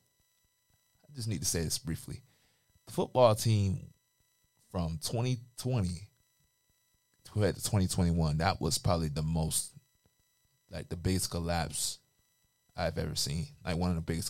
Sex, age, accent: male, 20-39, American